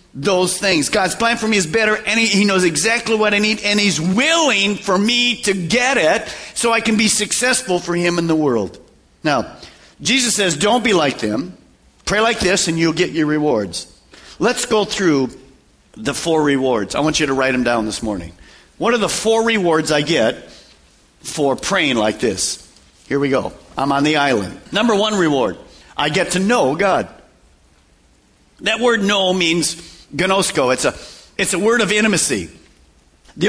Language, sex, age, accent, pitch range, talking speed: English, male, 50-69, American, 170-230 Hz, 185 wpm